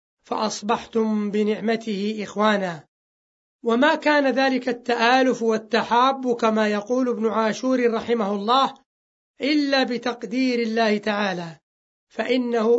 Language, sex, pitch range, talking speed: Arabic, male, 215-255 Hz, 90 wpm